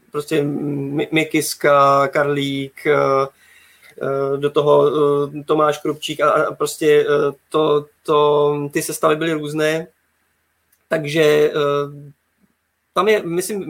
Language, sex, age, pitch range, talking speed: Czech, male, 20-39, 140-155 Hz, 75 wpm